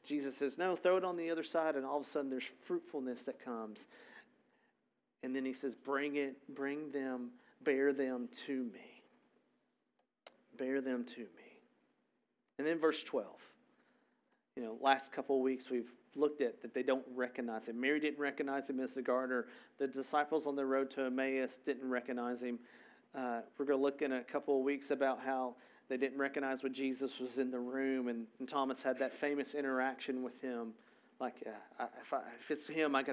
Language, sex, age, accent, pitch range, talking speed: English, male, 40-59, American, 130-145 Hz, 195 wpm